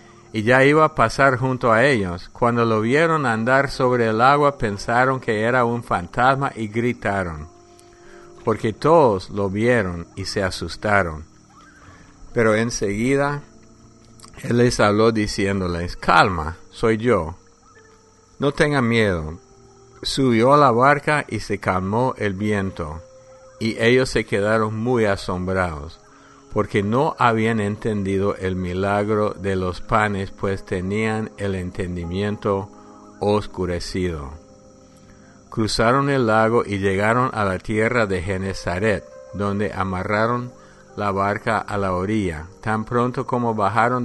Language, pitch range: English, 95-120 Hz